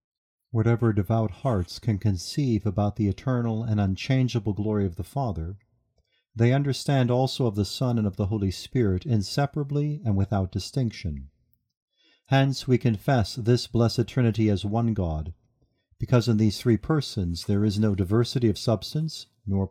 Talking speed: 150 wpm